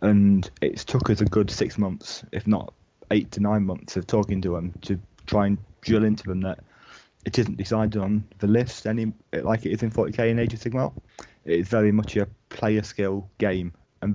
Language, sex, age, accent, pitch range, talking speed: English, male, 30-49, British, 95-105 Hz, 210 wpm